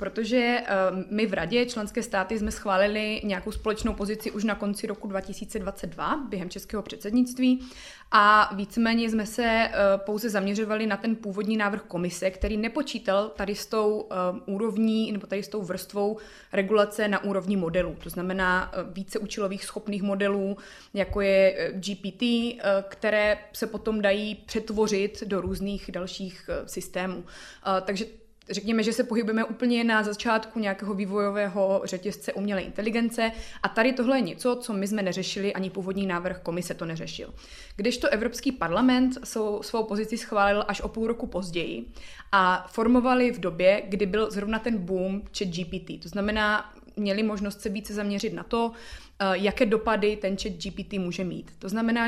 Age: 20-39